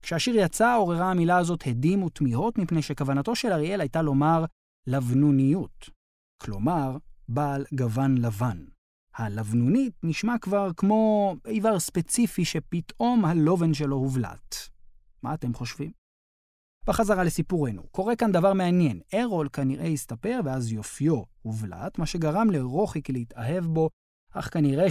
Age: 30-49